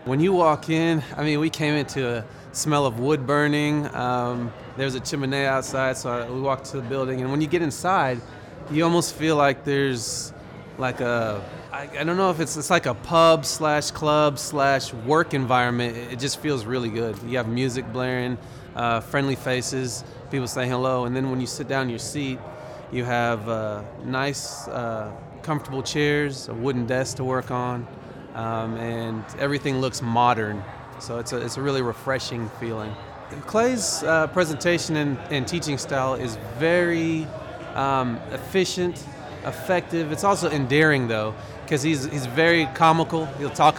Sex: male